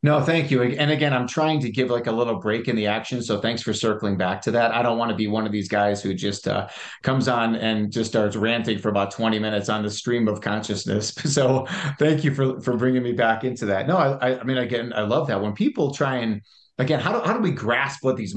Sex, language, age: male, English, 30-49